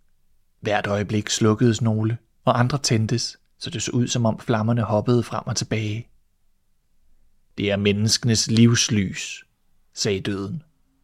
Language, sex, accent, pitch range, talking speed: Danish, male, native, 105-135 Hz, 130 wpm